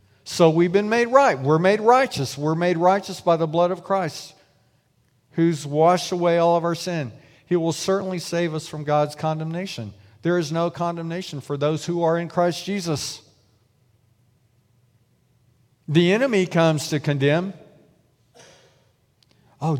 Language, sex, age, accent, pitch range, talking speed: English, male, 50-69, American, 130-185 Hz, 145 wpm